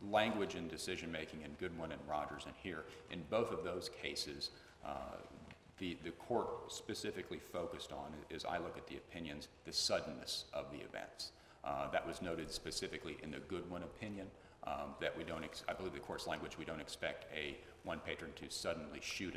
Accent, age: American, 40-59